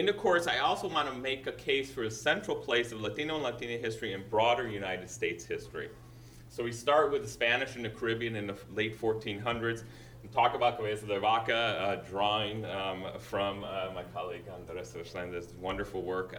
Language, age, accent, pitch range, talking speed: English, 30-49, American, 110-125 Hz, 200 wpm